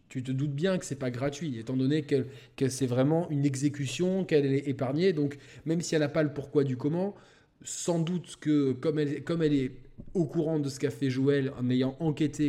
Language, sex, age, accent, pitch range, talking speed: French, male, 20-39, French, 130-155 Hz, 225 wpm